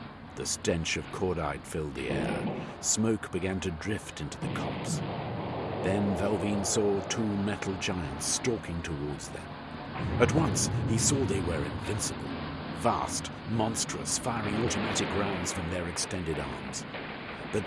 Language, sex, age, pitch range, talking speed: English, male, 50-69, 85-120 Hz, 135 wpm